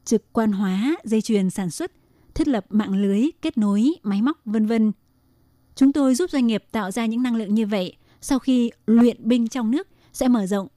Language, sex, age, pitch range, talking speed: Vietnamese, female, 20-39, 200-240 Hz, 210 wpm